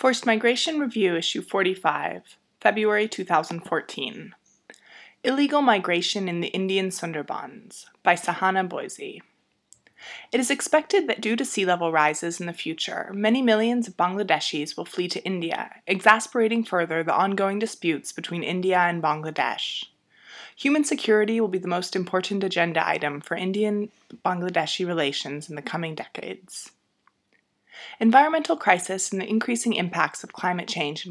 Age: 20-39